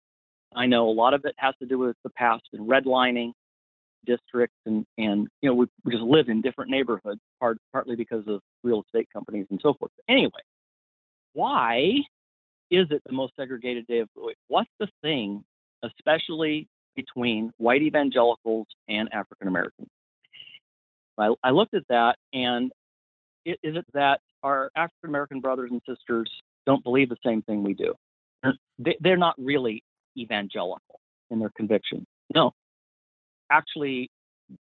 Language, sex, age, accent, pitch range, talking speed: English, male, 40-59, American, 115-150 Hz, 155 wpm